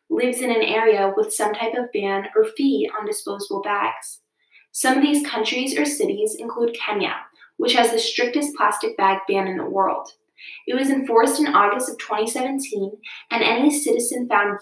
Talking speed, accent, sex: 175 wpm, American, female